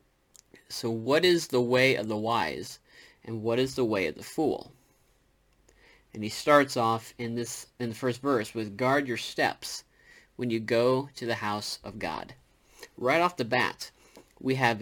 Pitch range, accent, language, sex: 110-130 Hz, American, English, male